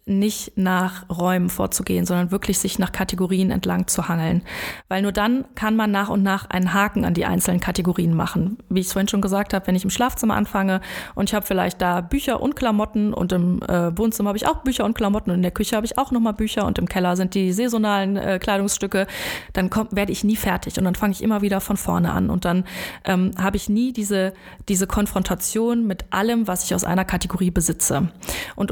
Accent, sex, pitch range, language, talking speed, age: German, female, 180-210 Hz, German, 220 wpm, 20-39